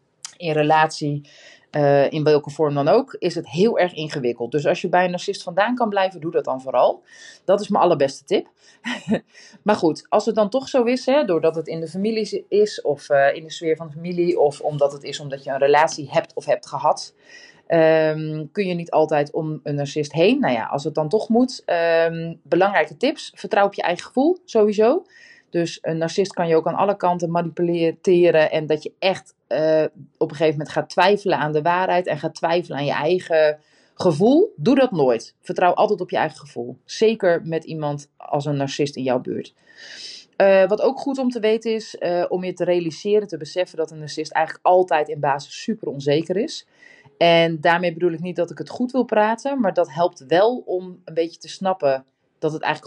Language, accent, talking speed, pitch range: Dutch, Dutch, 210 wpm, 155-200 Hz